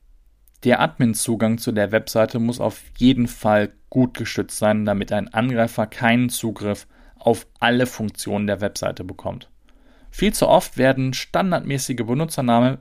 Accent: German